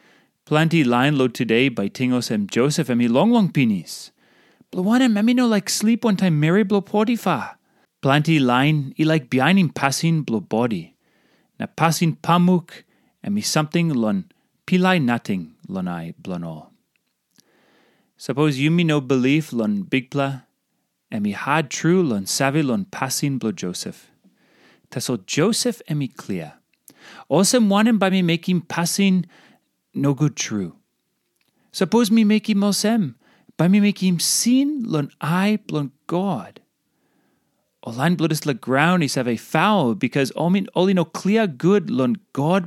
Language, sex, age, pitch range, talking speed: English, male, 30-49, 135-205 Hz, 160 wpm